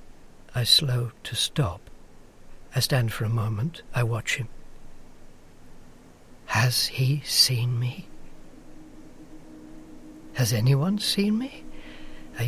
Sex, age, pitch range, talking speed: male, 60-79, 85-130 Hz, 100 wpm